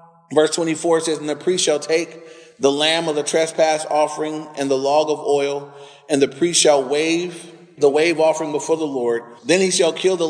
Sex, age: male, 30-49